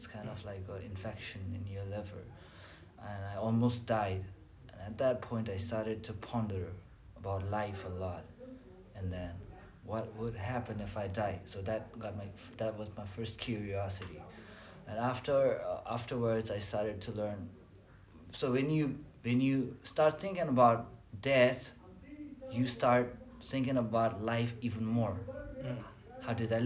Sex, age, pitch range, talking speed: male, 30-49, 100-120 Hz, 160 wpm